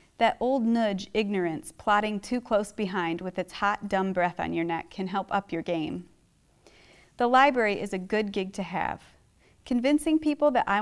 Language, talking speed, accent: English, 185 wpm, American